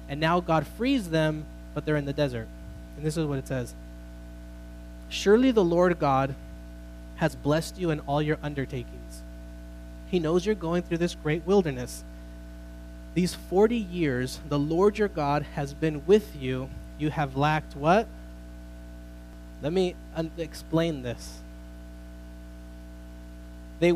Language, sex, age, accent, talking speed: English, male, 20-39, American, 140 wpm